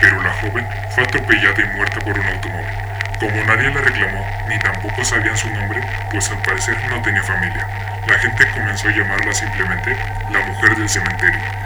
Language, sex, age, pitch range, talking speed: Spanish, female, 20-39, 100-110 Hz, 180 wpm